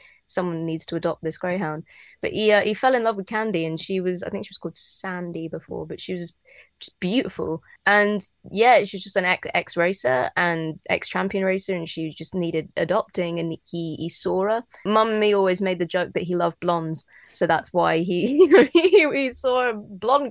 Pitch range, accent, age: 165-195 Hz, British, 20-39